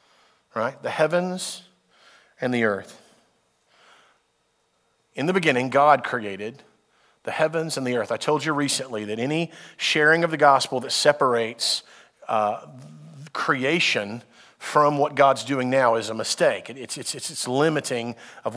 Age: 40-59